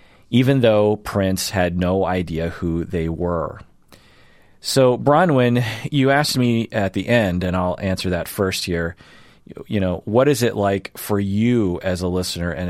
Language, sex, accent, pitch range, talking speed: English, male, American, 85-100 Hz, 165 wpm